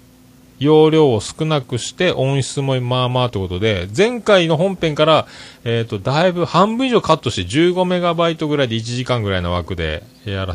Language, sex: Japanese, male